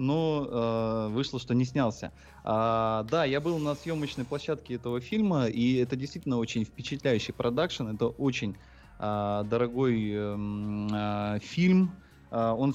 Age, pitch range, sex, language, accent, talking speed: 20-39, 110-135 Hz, male, Russian, native, 125 wpm